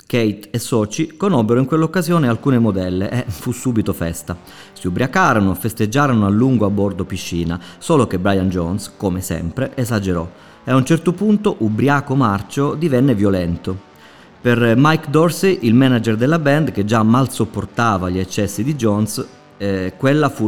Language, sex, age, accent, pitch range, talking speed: Italian, male, 30-49, native, 100-150 Hz, 160 wpm